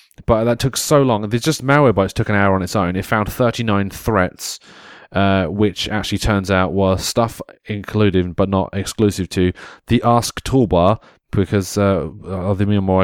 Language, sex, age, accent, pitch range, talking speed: English, male, 20-39, British, 95-110 Hz, 160 wpm